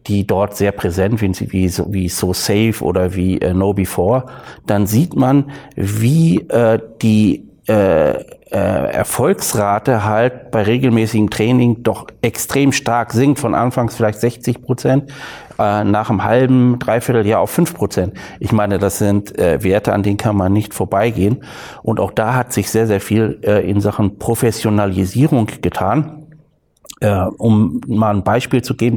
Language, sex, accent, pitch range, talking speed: German, male, German, 105-125 Hz, 160 wpm